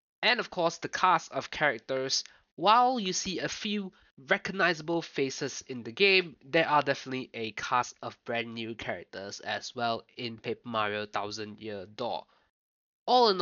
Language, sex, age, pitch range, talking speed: English, male, 20-39, 115-170 Hz, 160 wpm